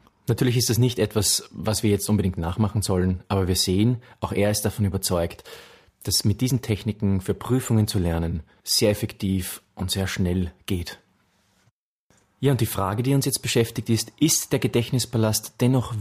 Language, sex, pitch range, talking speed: German, male, 100-120 Hz, 170 wpm